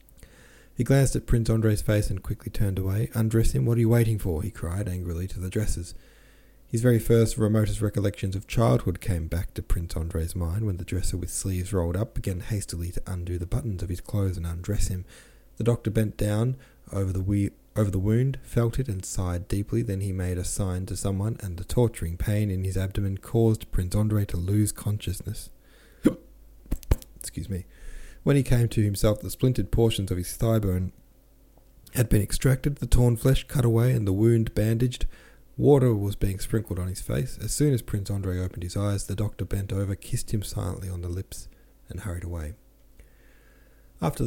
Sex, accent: male, Australian